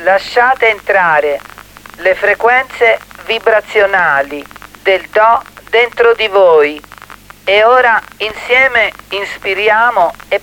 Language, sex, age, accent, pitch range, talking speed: Italian, male, 40-59, native, 185-240 Hz, 85 wpm